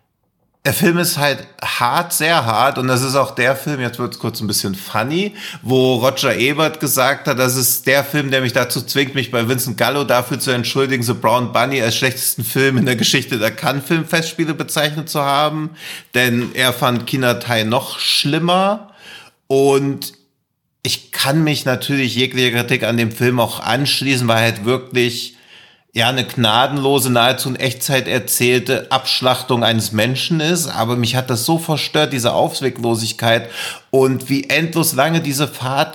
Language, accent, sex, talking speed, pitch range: German, German, male, 175 wpm, 125-145 Hz